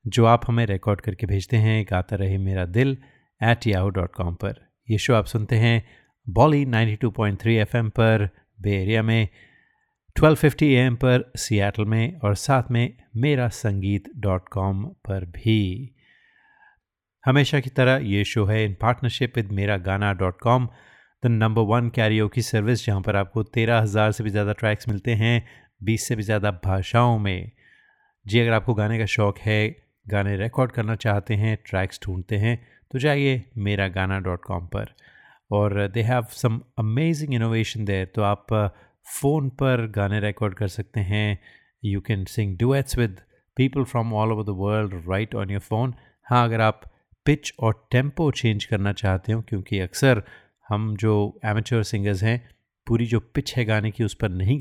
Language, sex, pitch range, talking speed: Hindi, male, 100-120 Hz, 170 wpm